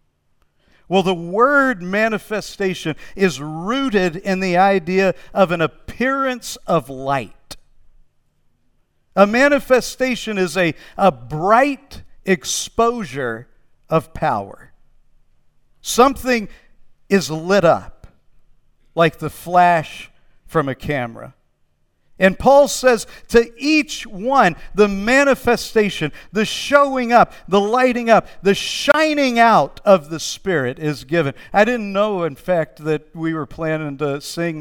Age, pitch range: 50-69, 160-235 Hz